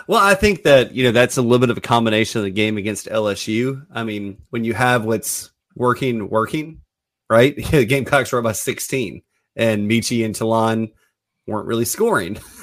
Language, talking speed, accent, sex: English, 190 wpm, American, male